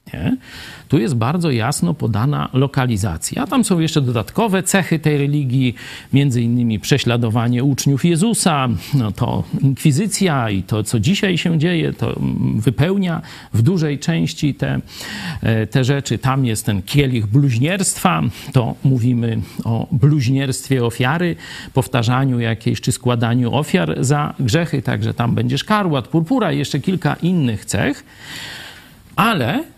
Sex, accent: male, native